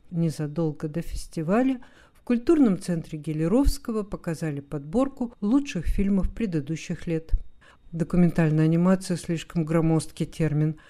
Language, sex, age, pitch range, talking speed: Russian, female, 50-69, 160-195 Hz, 105 wpm